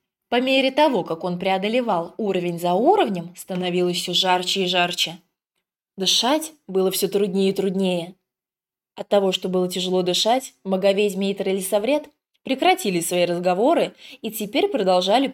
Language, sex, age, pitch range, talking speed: English, female, 20-39, 180-210 Hz, 135 wpm